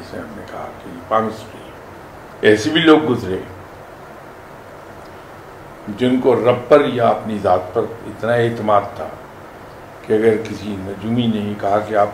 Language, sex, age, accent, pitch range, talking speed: English, male, 60-79, Indian, 100-130 Hz, 145 wpm